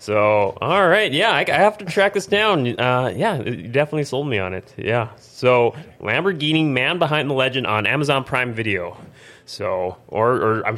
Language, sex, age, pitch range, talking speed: English, male, 20-39, 110-150 Hz, 185 wpm